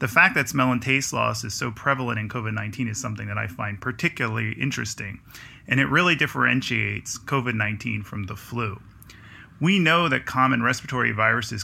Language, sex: English, male